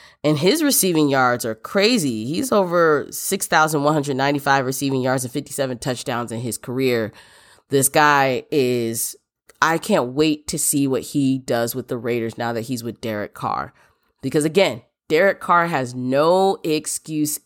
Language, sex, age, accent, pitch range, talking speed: English, female, 30-49, American, 130-160 Hz, 150 wpm